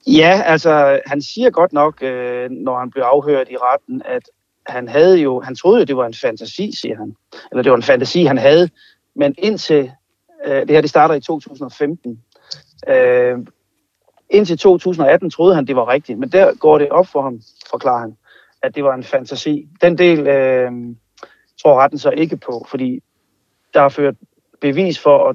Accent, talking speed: native, 180 wpm